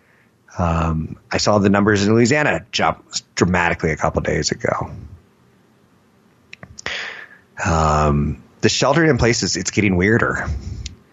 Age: 30-49